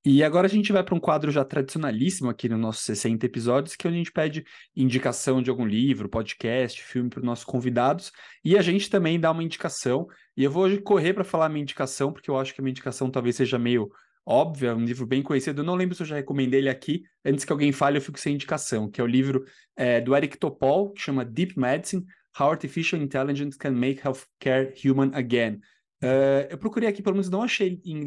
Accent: Brazilian